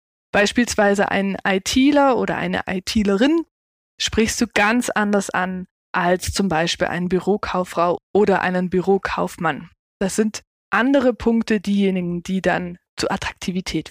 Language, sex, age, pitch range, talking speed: German, female, 20-39, 185-235 Hz, 120 wpm